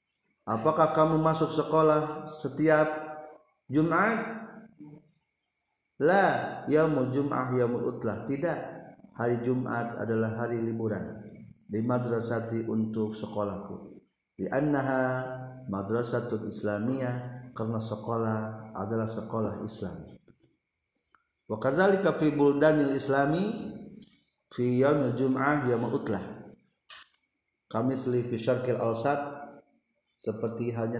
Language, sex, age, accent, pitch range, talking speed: Indonesian, male, 50-69, native, 115-150 Hz, 85 wpm